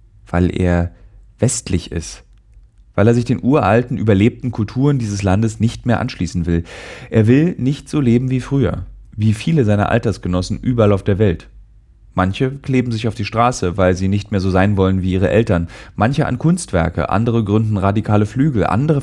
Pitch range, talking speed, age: 95-125 Hz, 175 wpm, 30-49